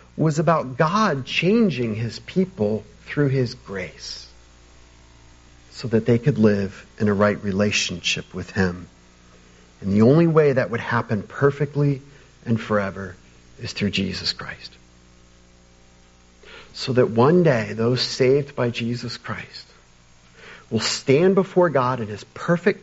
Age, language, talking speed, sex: 50-69, English, 130 wpm, male